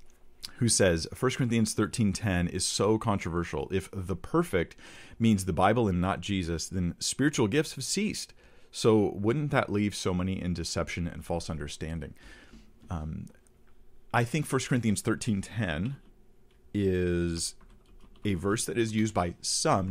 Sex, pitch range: male, 85-110 Hz